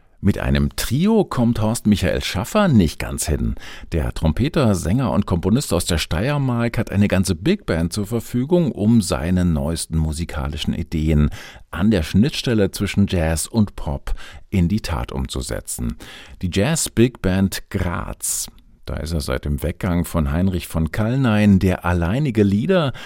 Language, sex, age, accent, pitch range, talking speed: German, male, 50-69, German, 80-110 Hz, 150 wpm